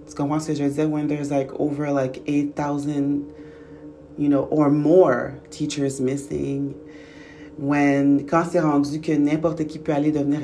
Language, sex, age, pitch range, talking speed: English, female, 30-49, 140-155 Hz, 145 wpm